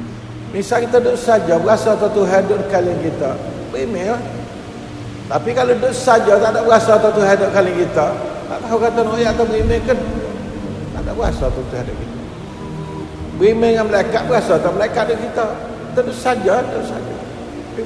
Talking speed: 165 wpm